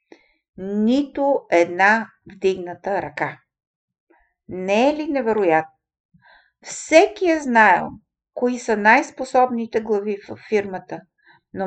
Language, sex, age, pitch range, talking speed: Bulgarian, female, 50-69, 195-265 Hz, 95 wpm